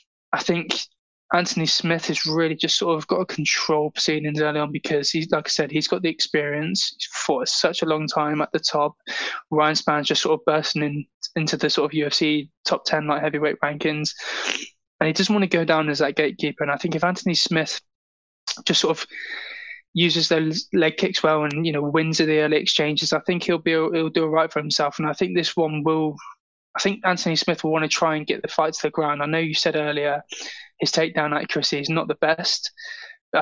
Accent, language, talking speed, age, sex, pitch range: British, English, 225 wpm, 20-39, male, 150-170 Hz